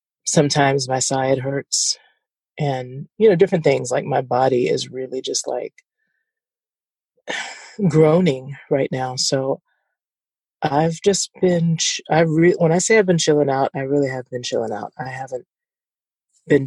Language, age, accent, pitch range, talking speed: English, 30-49, American, 135-160 Hz, 150 wpm